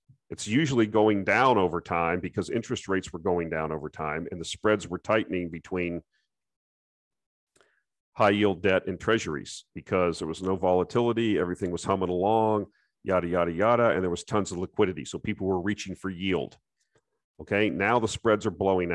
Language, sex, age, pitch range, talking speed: English, male, 40-59, 90-110 Hz, 175 wpm